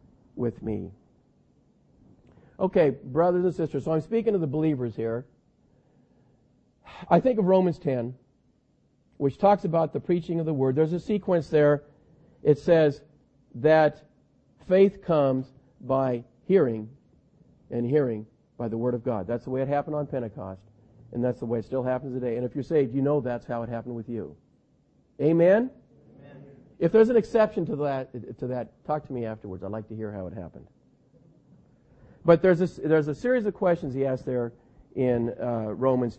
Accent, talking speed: American, 175 wpm